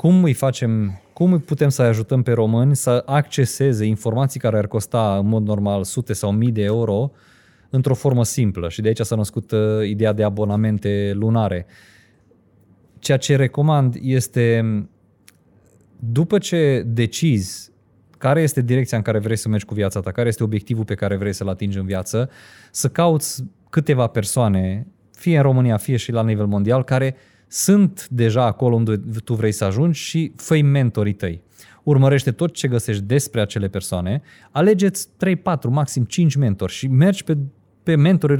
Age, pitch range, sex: 20-39, 105-140 Hz, male